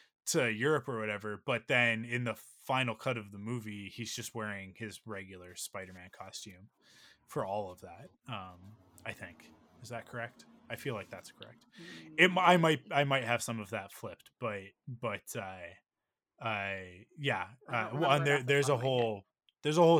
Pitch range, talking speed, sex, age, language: 105-140 Hz, 175 wpm, male, 20-39, English